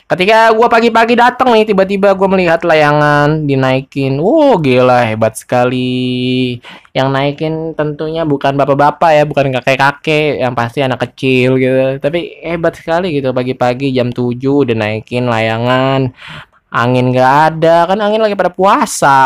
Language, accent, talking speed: Indonesian, native, 145 wpm